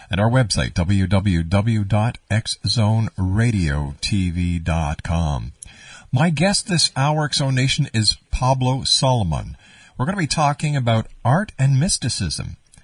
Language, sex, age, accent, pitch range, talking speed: English, male, 50-69, American, 100-130 Hz, 105 wpm